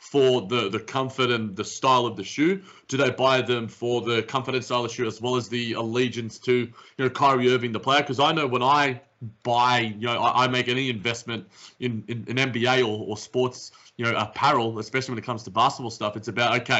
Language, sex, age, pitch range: English, male, 30-49, 115-135 Hz